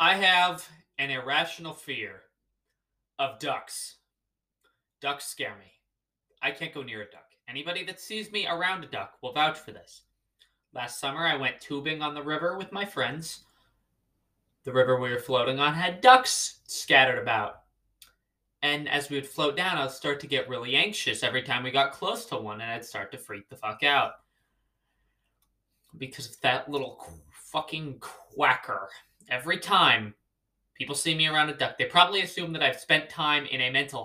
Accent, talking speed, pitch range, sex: American, 175 wpm, 115-155 Hz, male